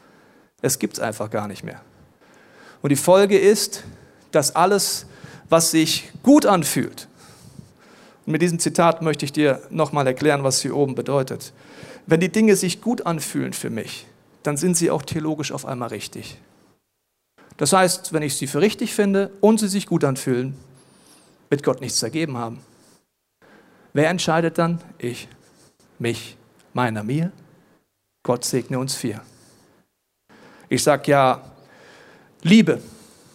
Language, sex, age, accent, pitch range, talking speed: German, male, 40-59, German, 145-205 Hz, 140 wpm